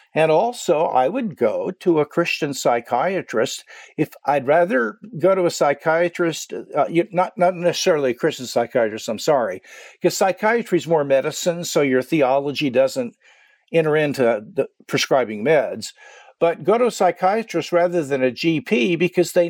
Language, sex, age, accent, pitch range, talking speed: English, male, 50-69, American, 150-195 Hz, 150 wpm